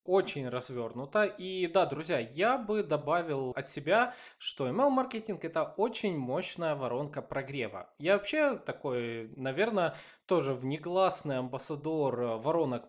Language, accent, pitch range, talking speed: Russian, native, 130-190 Hz, 120 wpm